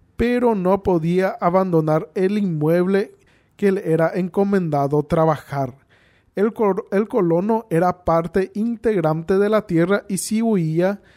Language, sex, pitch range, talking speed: Spanish, male, 150-195 Hz, 125 wpm